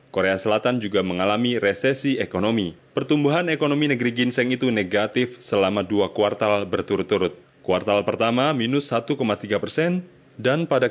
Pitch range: 100-135 Hz